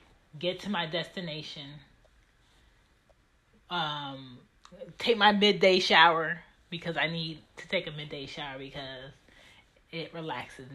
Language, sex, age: English, female, 30-49